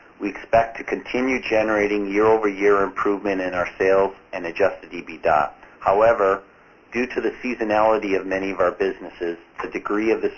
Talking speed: 155 wpm